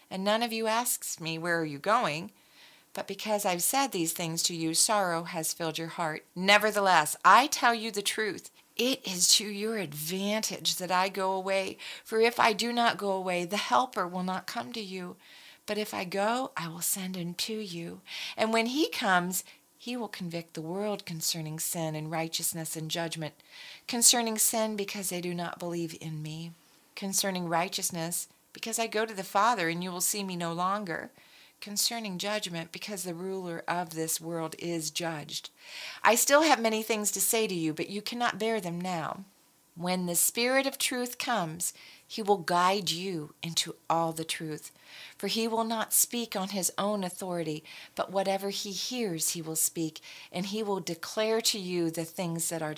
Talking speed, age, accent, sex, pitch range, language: 190 wpm, 40-59, American, female, 165-215 Hz, English